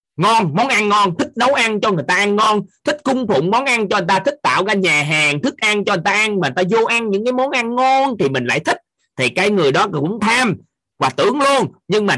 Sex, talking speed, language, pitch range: male, 275 wpm, Vietnamese, 150-220 Hz